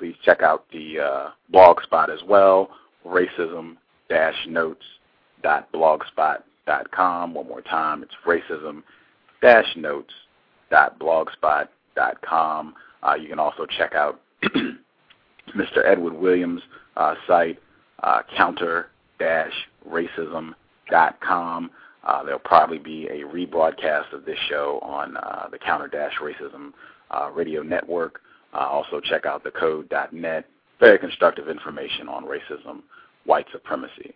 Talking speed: 95 wpm